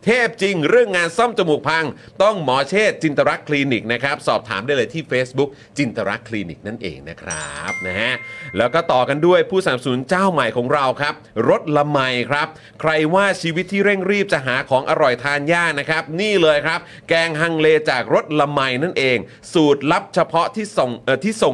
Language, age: Thai, 30-49